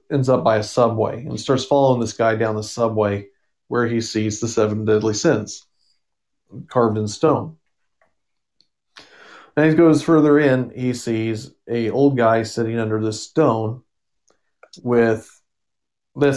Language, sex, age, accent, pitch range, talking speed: English, male, 40-59, American, 110-130 Hz, 145 wpm